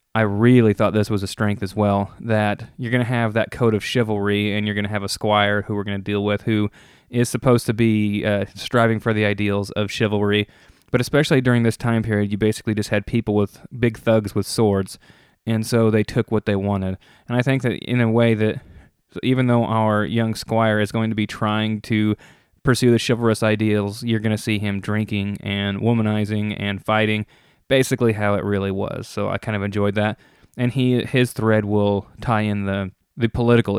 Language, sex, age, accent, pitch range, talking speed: English, male, 20-39, American, 105-115 Hz, 215 wpm